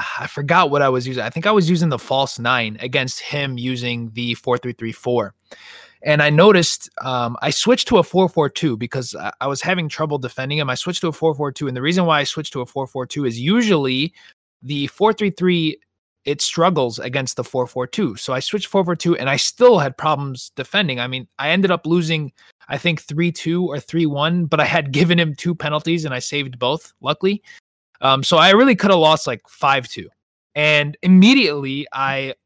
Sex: male